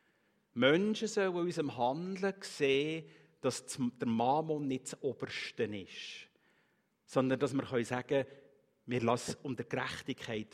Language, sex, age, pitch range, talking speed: German, male, 50-69, 140-210 Hz, 120 wpm